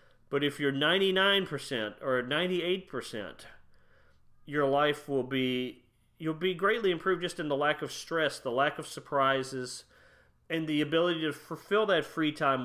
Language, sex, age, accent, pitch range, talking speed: English, male, 40-59, American, 125-155 Hz, 150 wpm